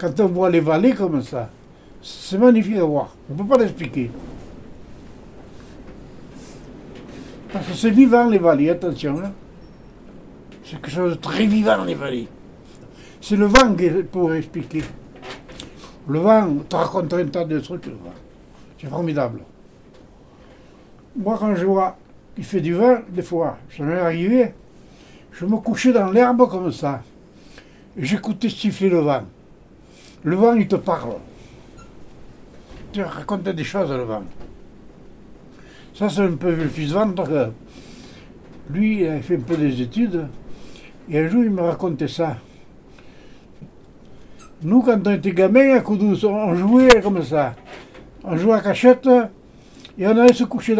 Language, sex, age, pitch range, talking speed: French, male, 60-79, 160-220 Hz, 150 wpm